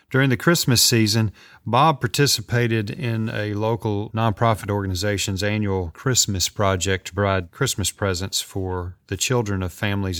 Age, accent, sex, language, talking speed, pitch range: 40-59, American, male, English, 135 wpm, 95-130 Hz